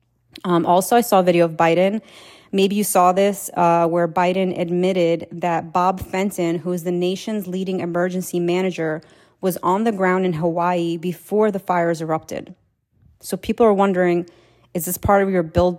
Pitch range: 170-190 Hz